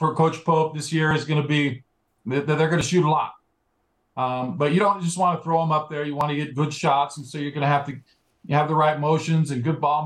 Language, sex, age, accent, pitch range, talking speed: English, male, 40-59, American, 145-170 Hz, 285 wpm